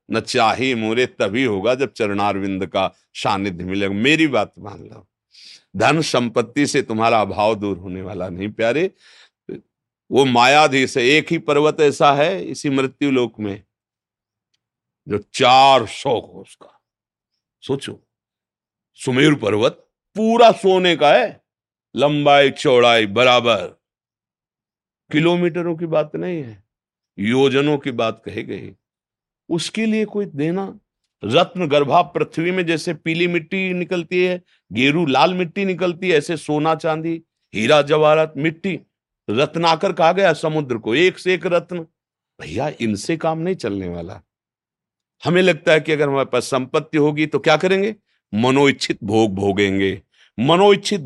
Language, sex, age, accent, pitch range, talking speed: Hindi, male, 50-69, native, 120-175 Hz, 135 wpm